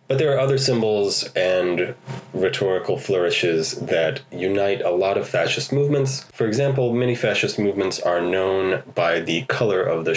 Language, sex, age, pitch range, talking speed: English, male, 30-49, 90-135 Hz, 160 wpm